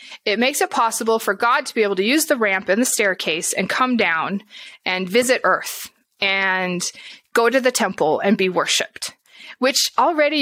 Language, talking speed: English, 185 wpm